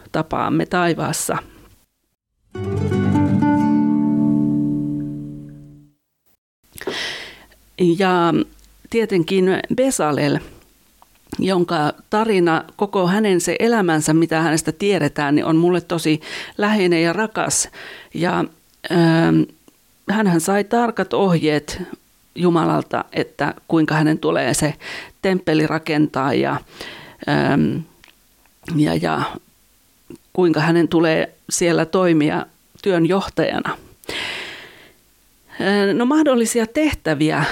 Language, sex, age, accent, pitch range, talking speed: Finnish, female, 40-59, native, 155-190 Hz, 75 wpm